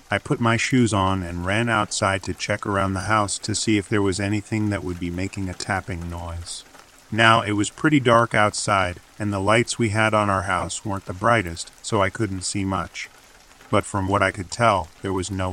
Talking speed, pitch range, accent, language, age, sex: 220 wpm, 95-110 Hz, American, English, 40-59, male